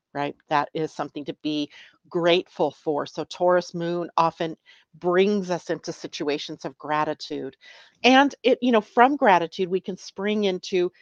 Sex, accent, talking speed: female, American, 150 wpm